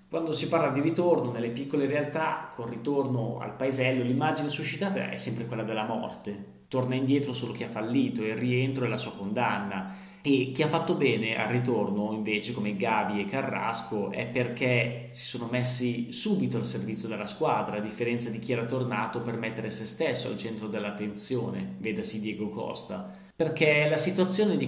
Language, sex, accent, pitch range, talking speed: Italian, male, native, 110-140 Hz, 180 wpm